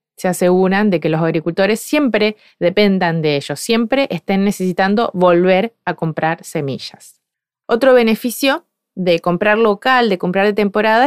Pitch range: 185-235 Hz